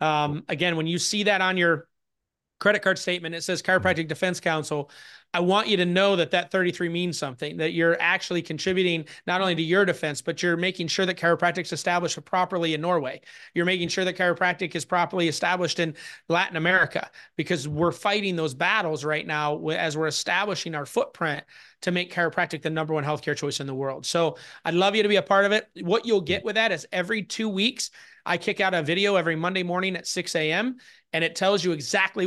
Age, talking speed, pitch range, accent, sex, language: 30-49, 215 wpm, 165-190 Hz, American, male, English